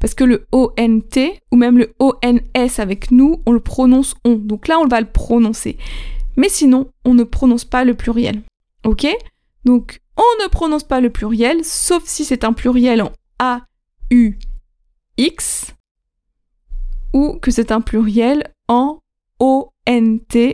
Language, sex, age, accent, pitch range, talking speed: French, female, 20-39, French, 230-280 Hz, 150 wpm